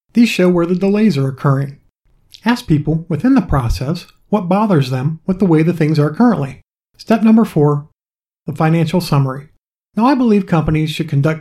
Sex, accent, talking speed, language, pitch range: male, American, 180 wpm, English, 145-195 Hz